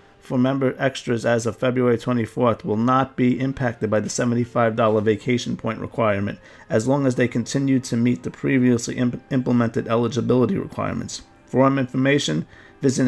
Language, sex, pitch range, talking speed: English, male, 110-130 Hz, 150 wpm